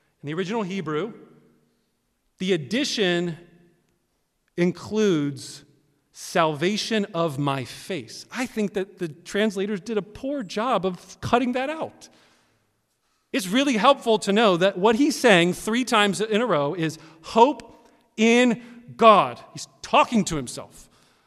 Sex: male